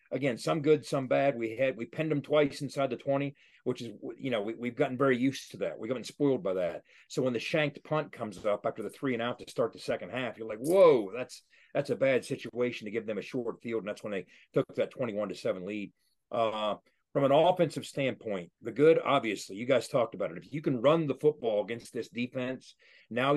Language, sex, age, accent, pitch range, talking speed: English, male, 40-59, American, 120-145 Hz, 240 wpm